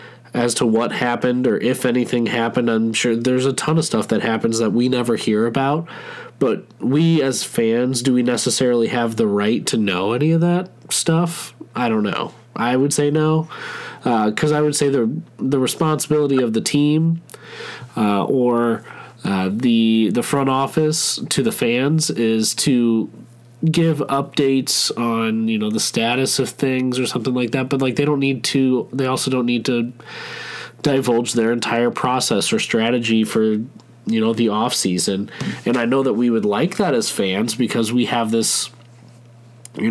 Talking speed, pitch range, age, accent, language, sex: 180 wpm, 115-135 Hz, 20-39, American, English, male